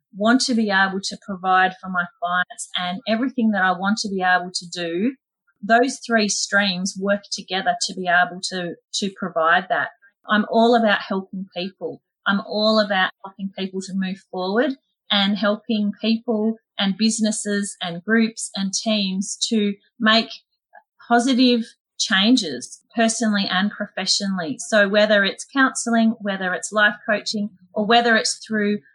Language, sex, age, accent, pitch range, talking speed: English, female, 30-49, Australian, 195-230 Hz, 150 wpm